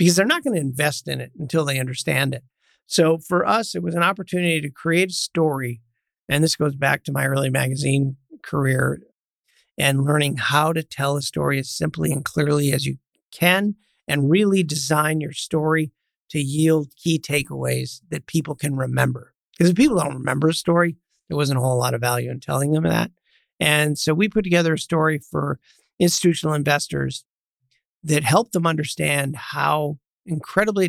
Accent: American